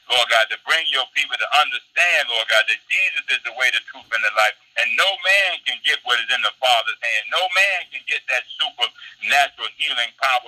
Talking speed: 225 wpm